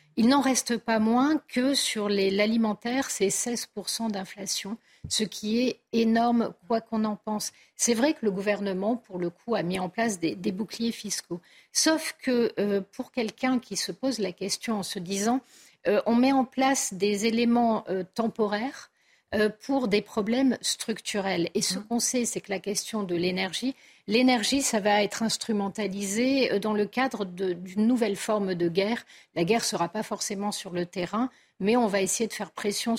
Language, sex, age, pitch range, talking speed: French, female, 50-69, 195-240 Hz, 185 wpm